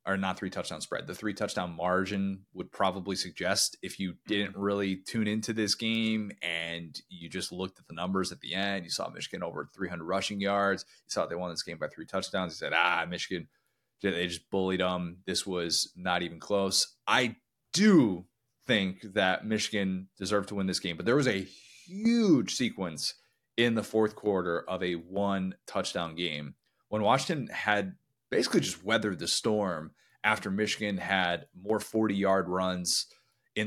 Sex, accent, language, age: male, American, English, 20-39